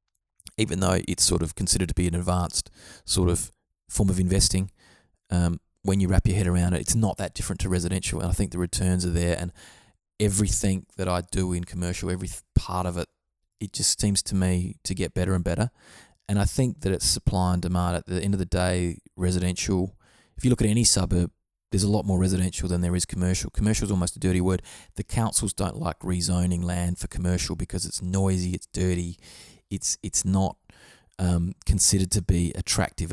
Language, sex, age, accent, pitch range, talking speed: English, male, 20-39, Australian, 90-100 Hz, 205 wpm